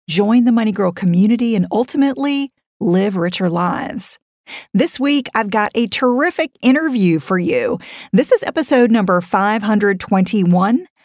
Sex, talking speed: female, 130 wpm